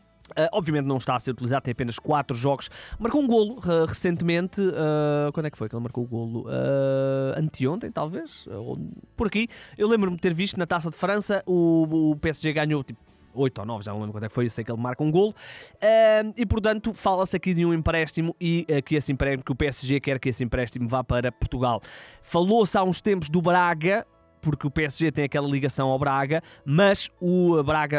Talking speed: 220 wpm